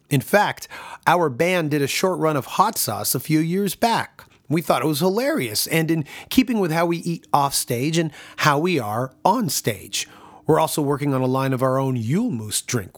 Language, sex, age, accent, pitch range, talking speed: English, male, 30-49, American, 135-195 Hz, 215 wpm